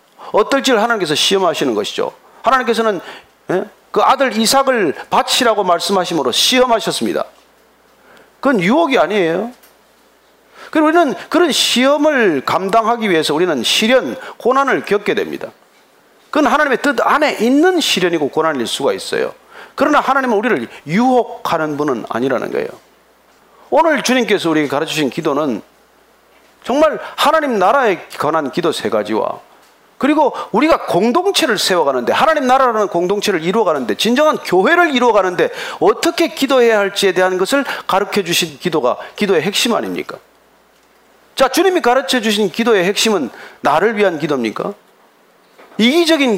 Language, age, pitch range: Korean, 40-59, 200-290 Hz